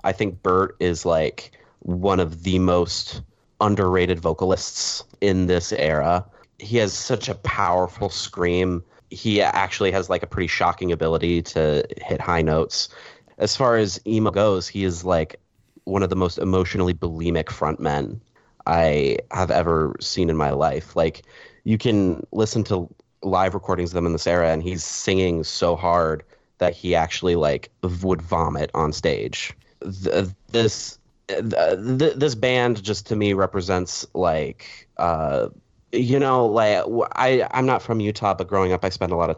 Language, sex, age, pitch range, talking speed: English, male, 30-49, 85-105 Hz, 160 wpm